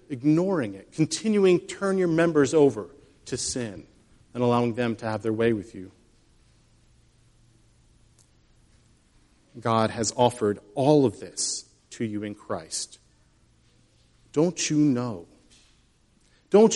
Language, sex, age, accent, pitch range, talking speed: English, male, 40-59, American, 120-180 Hz, 120 wpm